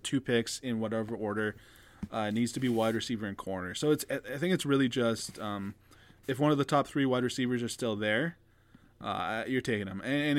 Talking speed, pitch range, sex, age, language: 215 wpm, 110-145 Hz, male, 20-39, English